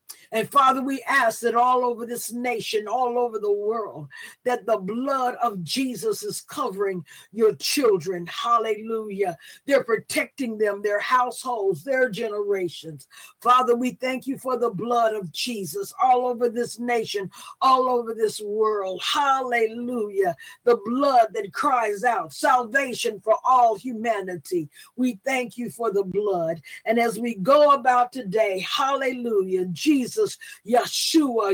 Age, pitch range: 50-69, 205-265 Hz